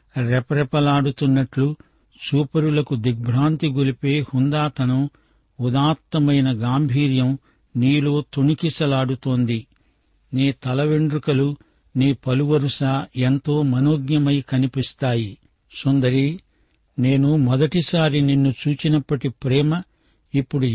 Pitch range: 125-150 Hz